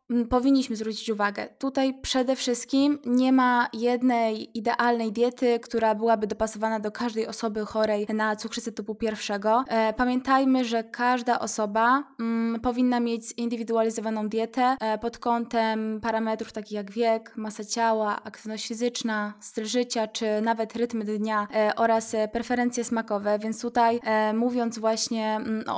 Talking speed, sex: 130 wpm, female